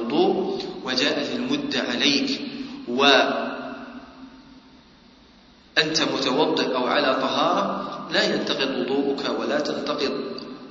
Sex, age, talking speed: male, 40-59, 75 wpm